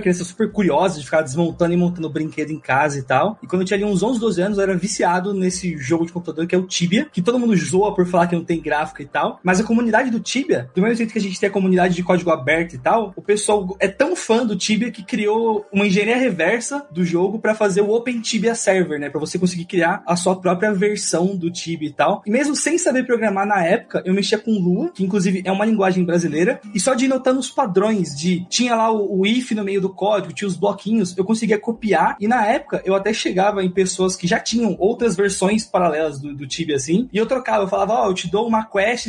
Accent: Brazilian